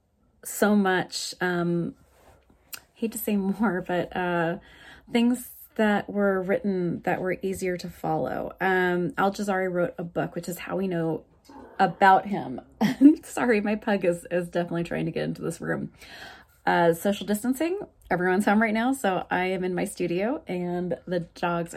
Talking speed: 165 wpm